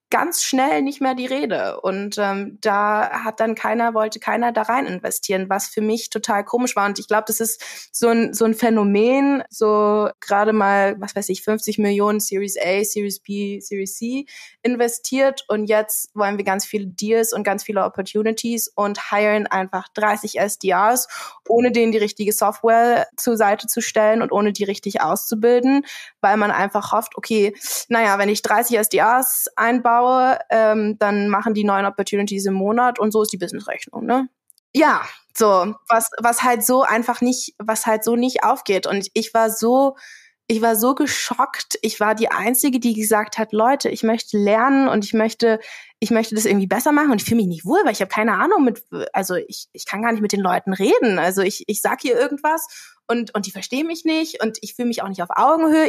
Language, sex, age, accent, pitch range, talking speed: German, female, 20-39, German, 205-245 Hz, 200 wpm